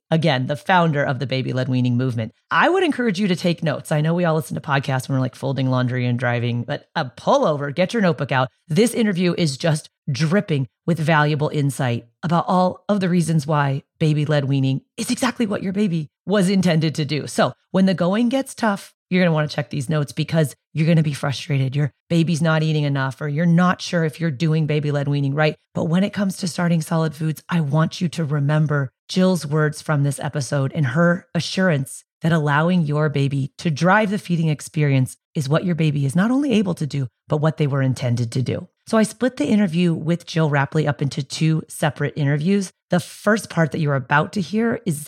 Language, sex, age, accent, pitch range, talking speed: English, female, 30-49, American, 145-180 Hz, 220 wpm